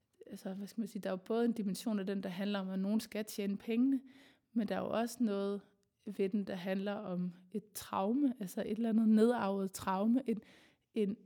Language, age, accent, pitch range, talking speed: Danish, 20-39, native, 200-240 Hz, 220 wpm